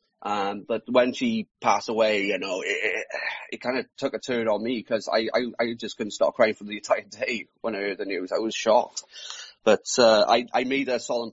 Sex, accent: male, British